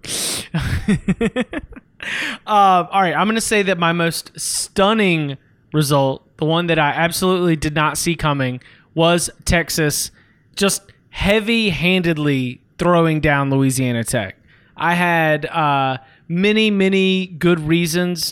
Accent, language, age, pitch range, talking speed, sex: American, English, 20-39, 150-175 Hz, 120 wpm, male